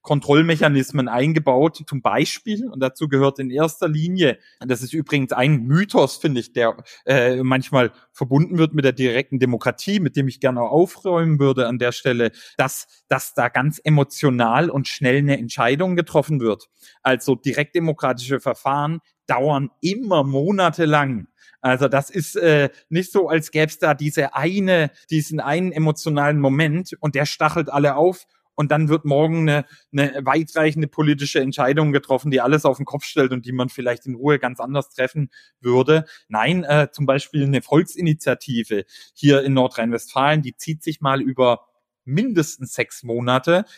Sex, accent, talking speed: male, German, 160 wpm